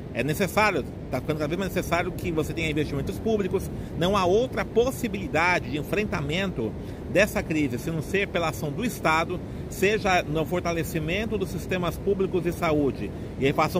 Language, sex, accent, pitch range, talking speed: Portuguese, male, Brazilian, 150-185 Hz, 155 wpm